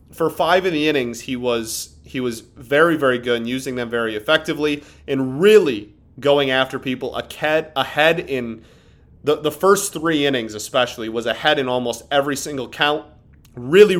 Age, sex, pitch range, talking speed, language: 30-49, male, 120-155 Hz, 165 wpm, English